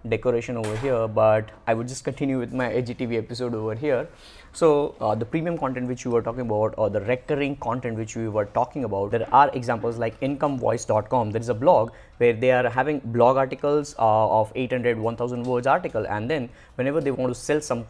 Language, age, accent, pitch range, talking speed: English, 20-39, Indian, 110-130 Hz, 200 wpm